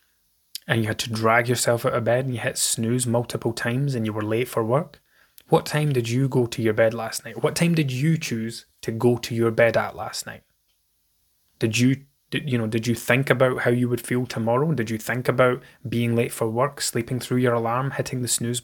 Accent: British